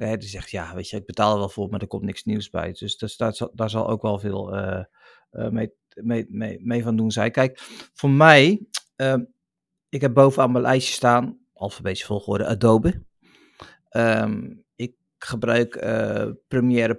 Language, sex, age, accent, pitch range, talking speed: Dutch, male, 50-69, Dutch, 105-125 Hz, 180 wpm